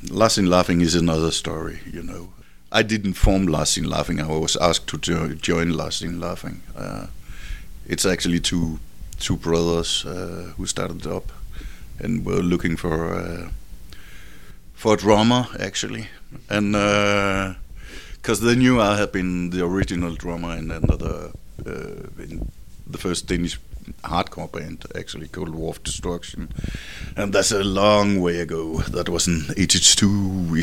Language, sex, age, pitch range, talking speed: English, male, 60-79, 85-100 Hz, 150 wpm